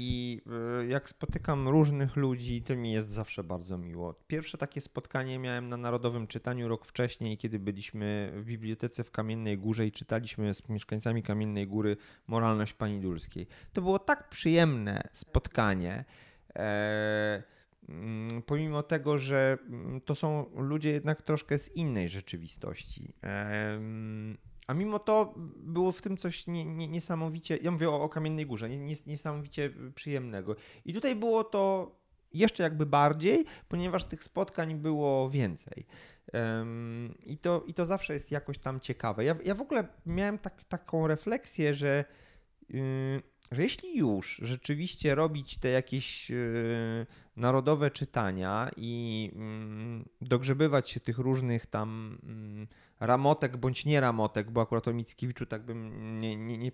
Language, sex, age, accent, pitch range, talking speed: Polish, male, 30-49, native, 110-150 Hz, 135 wpm